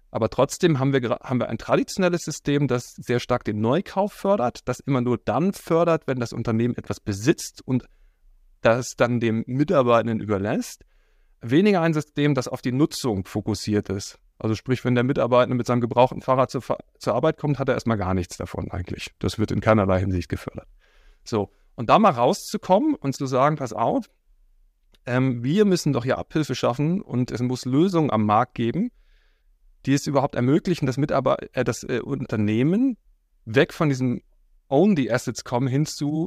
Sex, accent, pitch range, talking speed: male, German, 110-150 Hz, 175 wpm